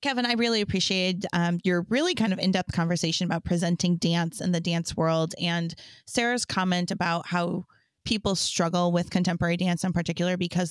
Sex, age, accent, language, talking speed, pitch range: female, 20-39, American, English, 175 wpm, 175-195 Hz